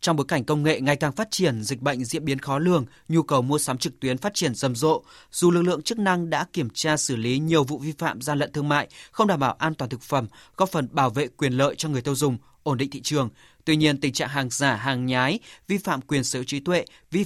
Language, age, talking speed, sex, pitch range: Vietnamese, 20-39, 275 wpm, male, 125-160 Hz